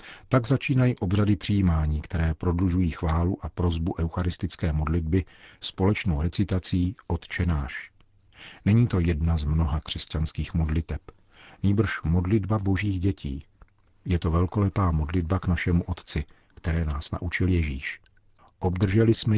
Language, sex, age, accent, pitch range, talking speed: Czech, male, 50-69, native, 85-100 Hz, 120 wpm